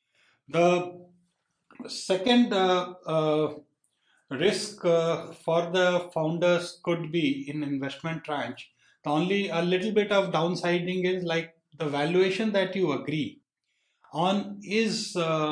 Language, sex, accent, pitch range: English, male, Indian, 145-180 Hz